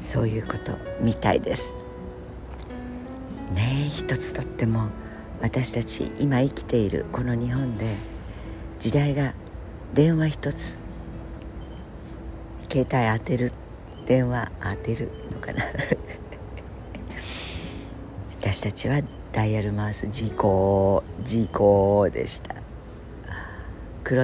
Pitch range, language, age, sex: 90-125 Hz, Japanese, 60-79, female